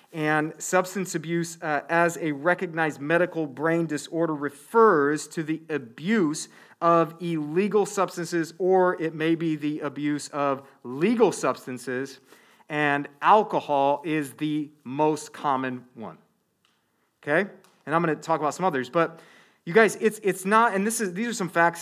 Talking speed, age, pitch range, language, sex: 150 wpm, 40-59, 145-180 Hz, English, male